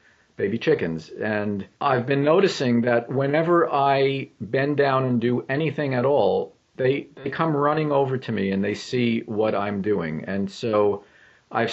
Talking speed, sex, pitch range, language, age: 165 wpm, male, 110-145 Hz, English, 50-69